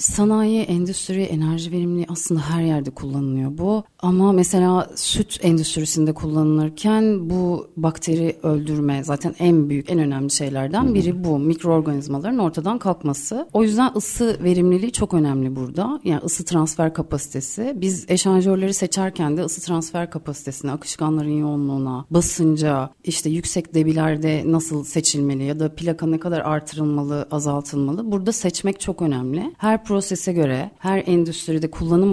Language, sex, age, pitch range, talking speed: Turkish, female, 30-49, 150-190 Hz, 135 wpm